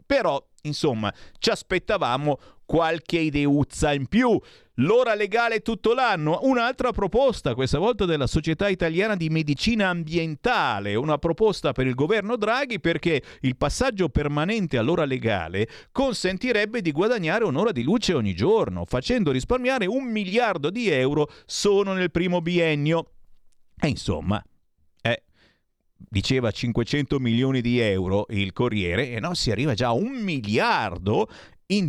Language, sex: Italian, male